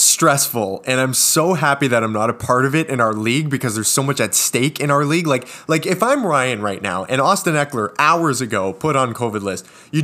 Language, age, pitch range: English, 20-39, 125-175 Hz